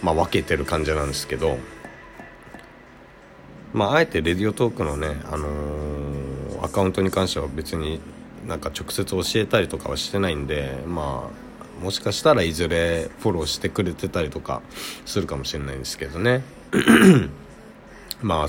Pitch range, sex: 75-100 Hz, male